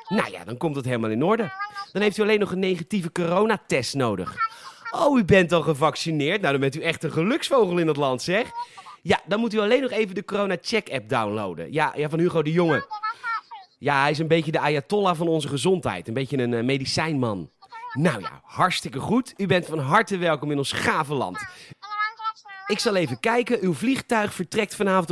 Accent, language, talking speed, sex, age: Dutch, Dutch, 200 wpm, male, 30-49